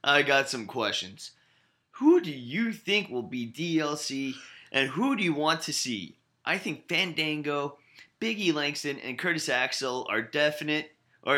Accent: American